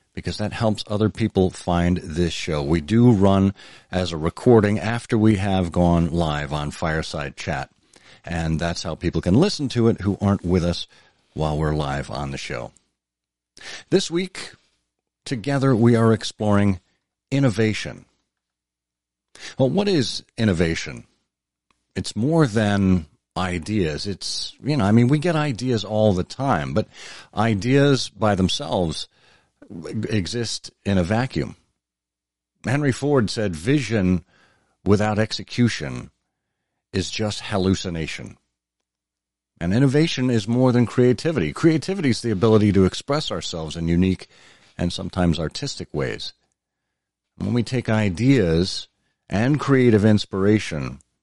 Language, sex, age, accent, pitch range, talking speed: English, male, 50-69, American, 85-120 Hz, 130 wpm